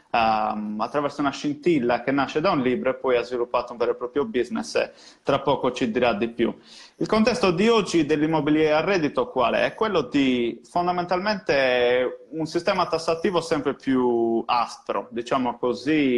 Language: Italian